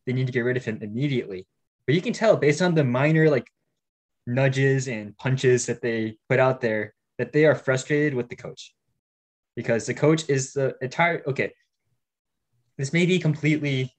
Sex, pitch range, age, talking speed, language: male, 120-150 Hz, 10-29, 190 wpm, English